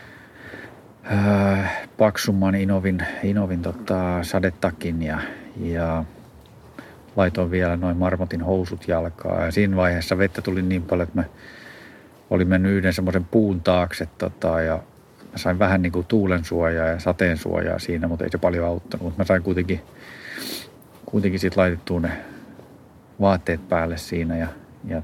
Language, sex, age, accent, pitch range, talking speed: Finnish, male, 40-59, native, 85-95 Hz, 135 wpm